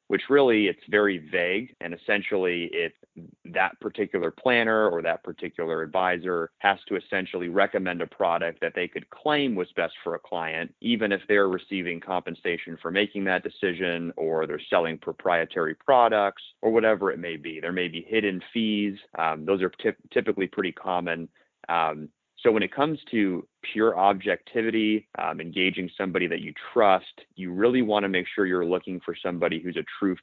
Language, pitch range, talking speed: English, 90-110 Hz, 175 wpm